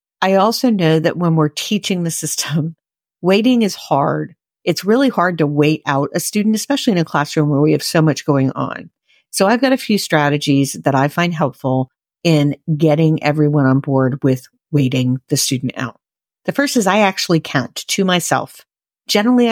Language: English